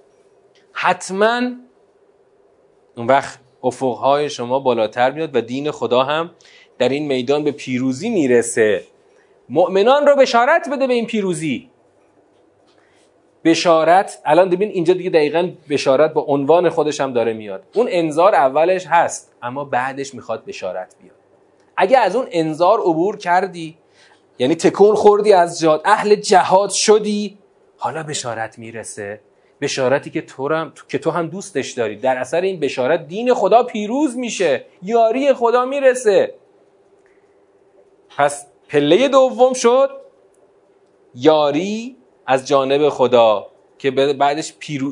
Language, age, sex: Persian, 30-49, male